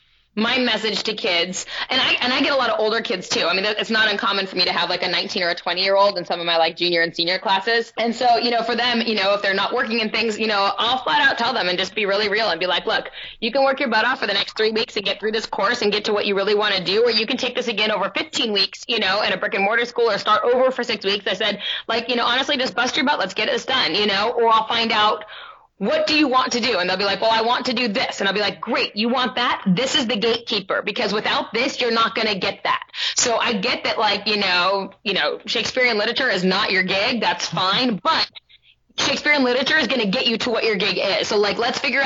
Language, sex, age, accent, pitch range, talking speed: English, female, 20-39, American, 200-245 Hz, 300 wpm